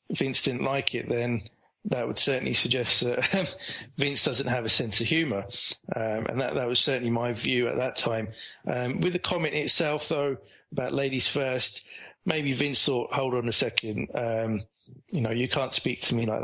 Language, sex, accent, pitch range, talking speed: English, male, British, 115-140 Hz, 195 wpm